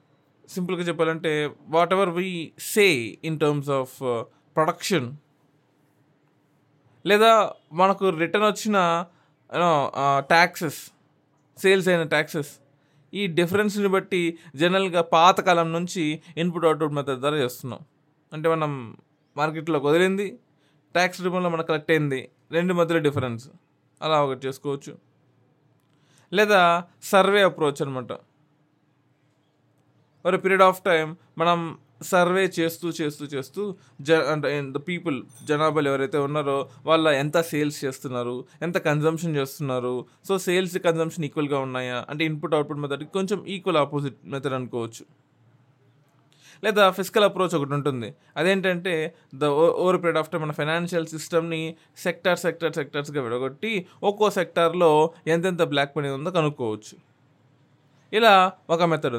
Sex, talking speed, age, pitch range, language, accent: male, 115 wpm, 20-39, 145-175 Hz, Telugu, native